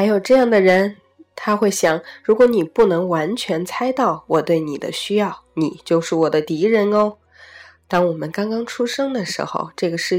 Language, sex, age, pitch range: Chinese, female, 20-39, 165-245 Hz